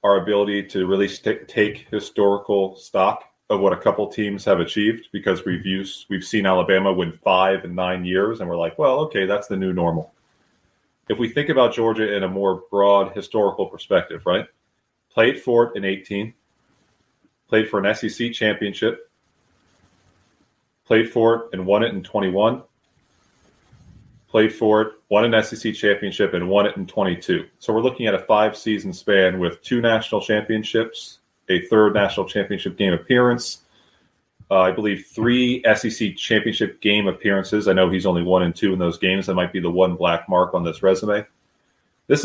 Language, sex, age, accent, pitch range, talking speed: English, male, 30-49, American, 95-110 Hz, 175 wpm